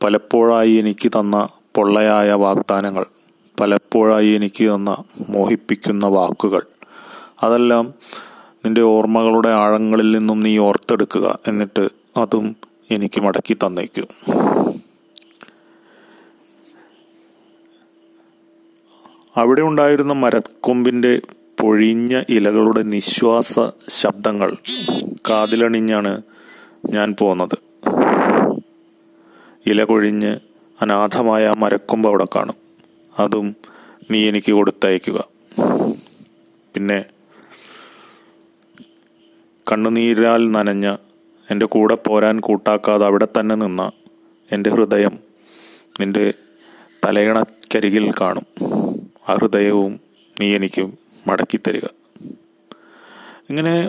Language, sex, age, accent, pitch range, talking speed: Malayalam, male, 30-49, native, 105-120 Hz, 65 wpm